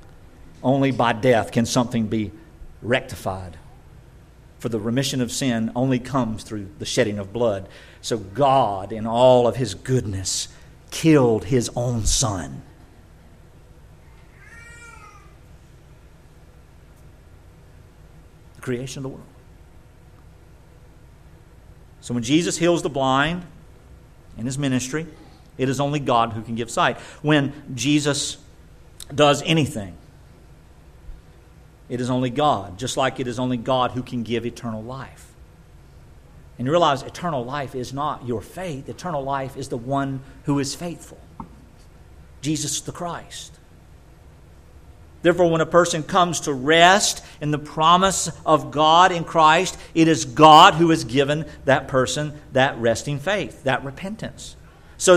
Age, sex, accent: 50-69, male, American